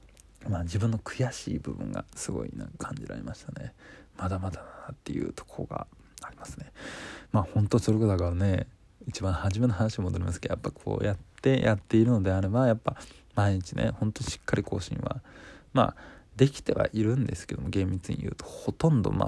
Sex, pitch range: male, 95-120 Hz